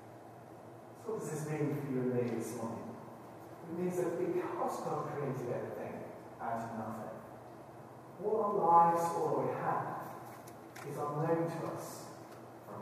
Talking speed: 150 wpm